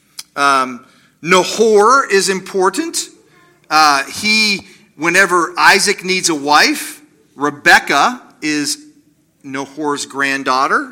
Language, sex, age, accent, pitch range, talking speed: English, male, 40-59, American, 150-210 Hz, 80 wpm